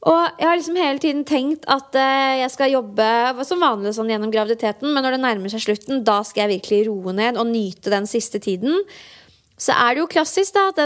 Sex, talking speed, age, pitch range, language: female, 220 wpm, 20-39, 220-280 Hz, English